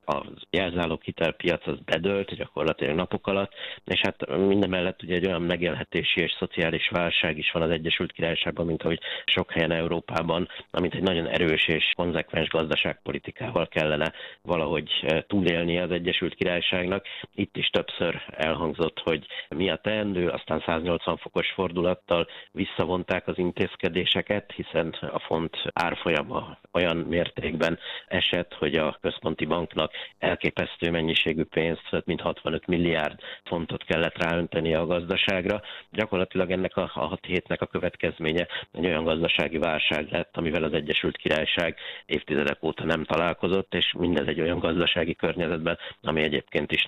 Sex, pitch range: male, 80-95 Hz